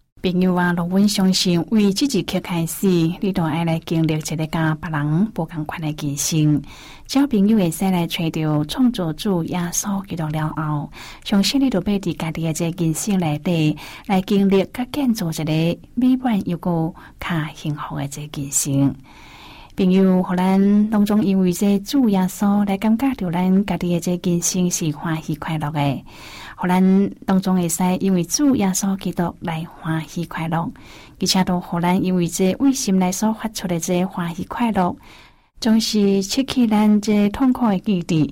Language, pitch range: Chinese, 165-200 Hz